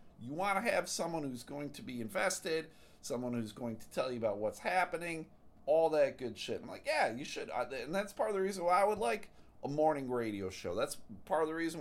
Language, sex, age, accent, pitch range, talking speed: English, male, 40-59, American, 105-155 Hz, 240 wpm